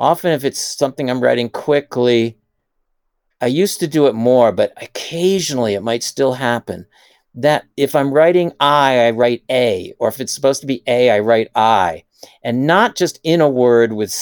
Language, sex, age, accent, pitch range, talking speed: English, male, 50-69, American, 115-145 Hz, 185 wpm